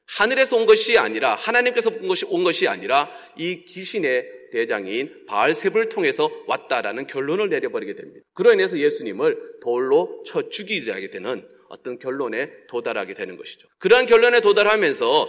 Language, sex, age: Korean, male, 30-49